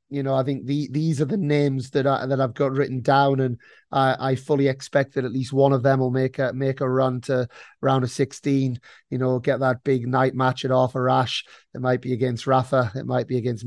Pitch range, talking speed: 130-145 Hz, 245 wpm